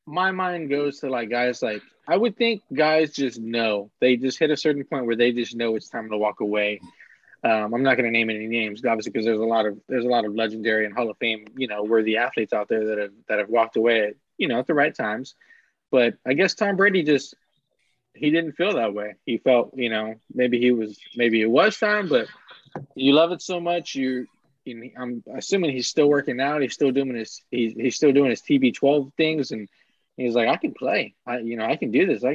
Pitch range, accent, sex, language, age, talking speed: 115-150 Hz, American, male, English, 20-39, 245 wpm